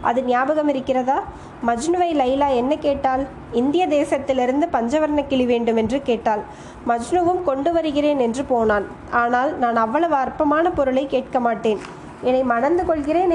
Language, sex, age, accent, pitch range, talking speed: Tamil, female, 20-39, native, 245-305 Hz, 130 wpm